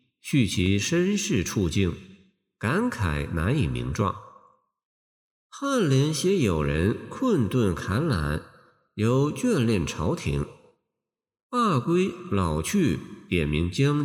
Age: 50-69